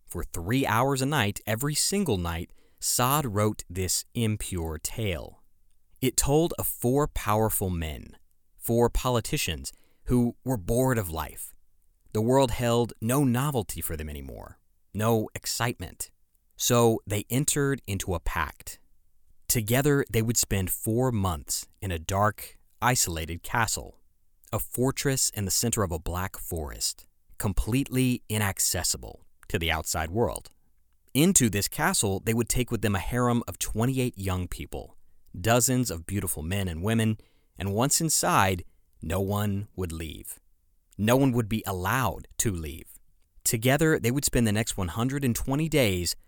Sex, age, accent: male, 30-49, American